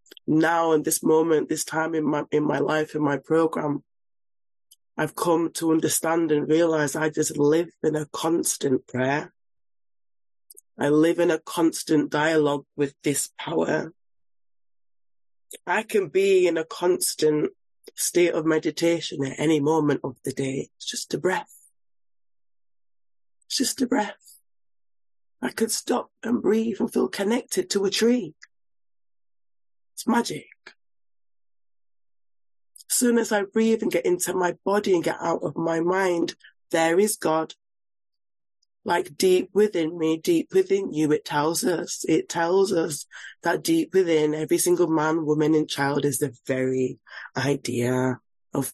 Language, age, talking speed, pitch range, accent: English, 20-39, 145 wpm, 150-220 Hz, British